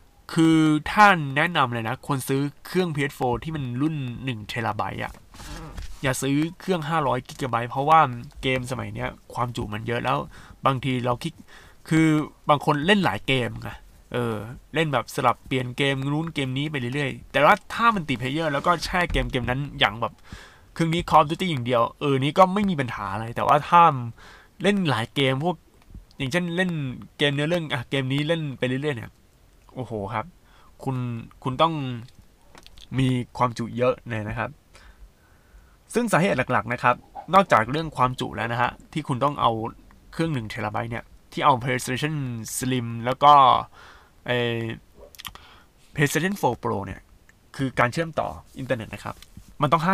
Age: 20-39